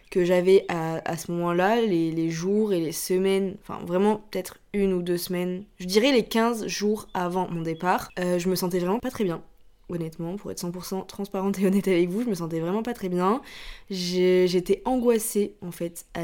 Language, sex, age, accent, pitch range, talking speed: French, female, 20-39, French, 175-195 Hz, 210 wpm